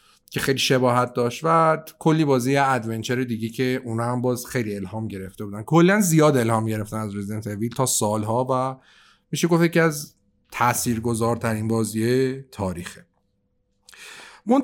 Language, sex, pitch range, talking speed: Persian, male, 115-170 Hz, 145 wpm